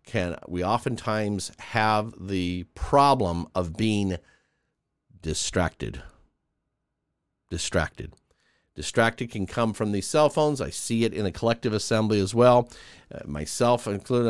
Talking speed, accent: 120 wpm, American